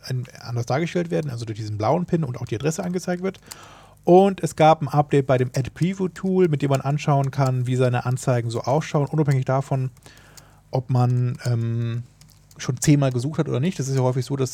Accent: German